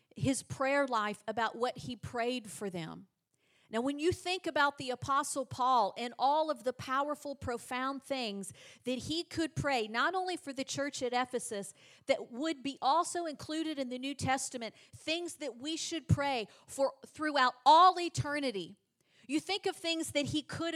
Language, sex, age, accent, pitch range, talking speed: English, female, 40-59, American, 210-285 Hz, 175 wpm